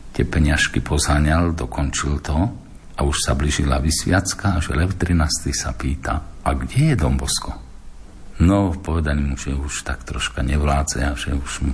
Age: 50-69